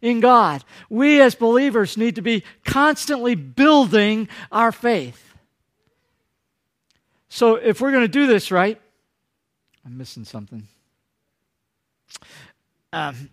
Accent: American